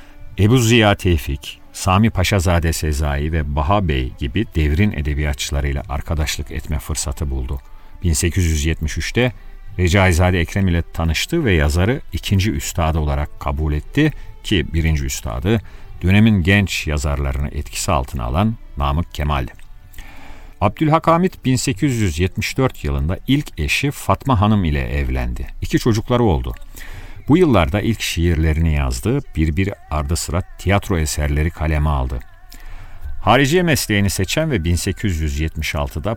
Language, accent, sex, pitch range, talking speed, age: Turkish, native, male, 75-100 Hz, 115 wpm, 50-69